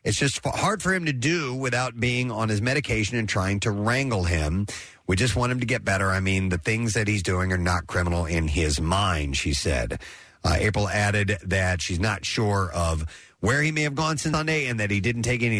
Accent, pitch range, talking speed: American, 95-125 Hz, 230 wpm